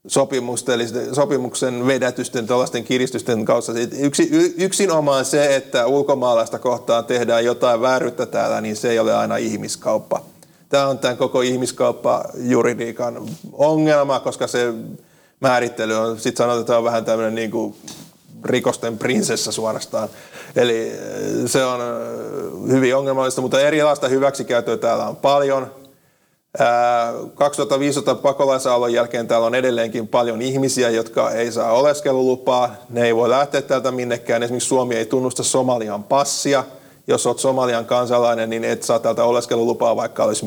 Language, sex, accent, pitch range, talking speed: Finnish, male, native, 120-135 Hz, 125 wpm